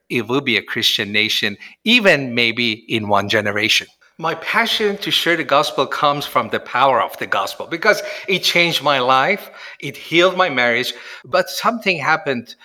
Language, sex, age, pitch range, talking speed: English, male, 50-69, 125-205 Hz, 170 wpm